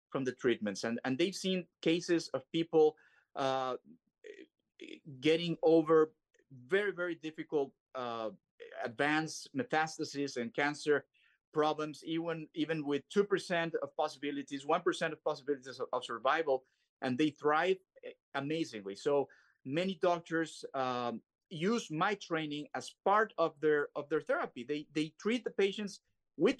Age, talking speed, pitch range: 30-49, 135 wpm, 140-180 Hz